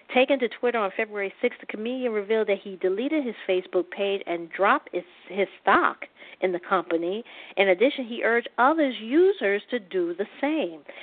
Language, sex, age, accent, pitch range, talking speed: English, female, 50-69, American, 180-225 Hz, 180 wpm